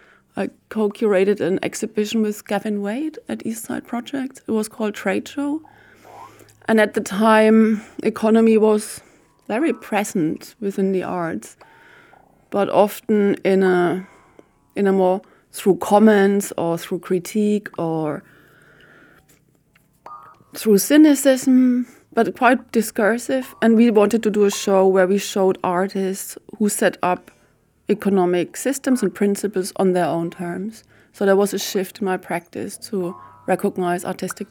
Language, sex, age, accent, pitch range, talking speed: English, female, 30-49, German, 185-220 Hz, 135 wpm